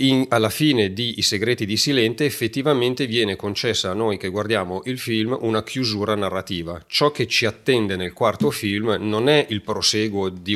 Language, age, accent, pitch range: Italian, 40-59, native, 95-110 Hz